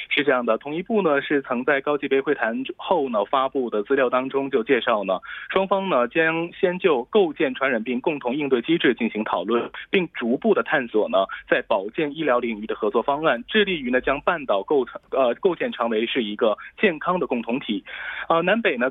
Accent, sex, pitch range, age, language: Chinese, male, 120-175 Hz, 20-39, Korean